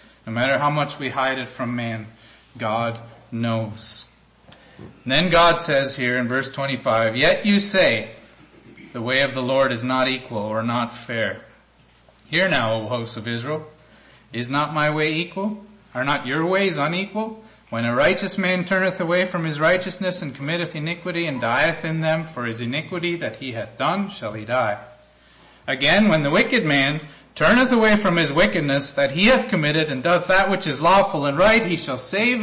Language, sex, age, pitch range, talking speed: English, male, 30-49, 130-190 Hz, 185 wpm